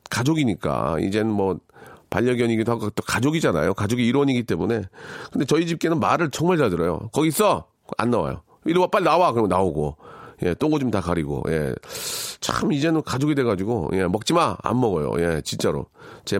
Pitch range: 105-170 Hz